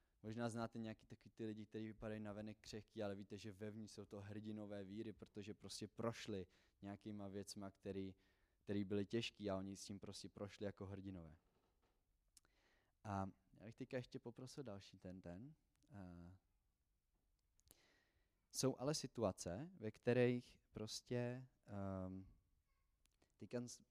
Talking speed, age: 130 wpm, 20-39